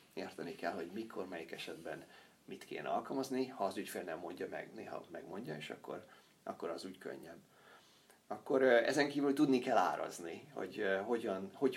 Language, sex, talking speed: Hungarian, male, 165 wpm